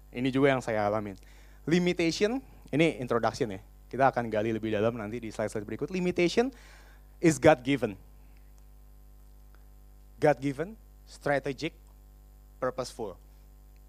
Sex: male